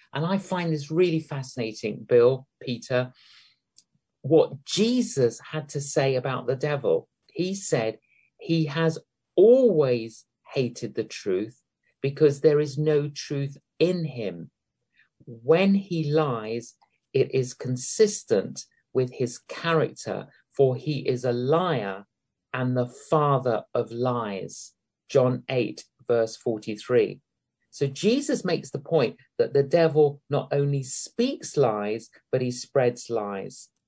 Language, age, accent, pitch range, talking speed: English, 50-69, British, 120-160 Hz, 125 wpm